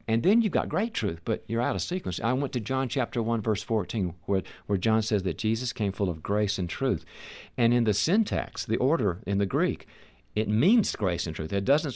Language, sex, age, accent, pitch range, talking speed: English, male, 50-69, American, 85-105 Hz, 235 wpm